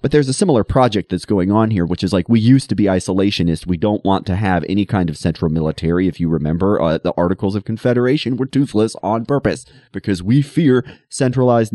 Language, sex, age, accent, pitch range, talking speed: English, male, 30-49, American, 95-150 Hz, 220 wpm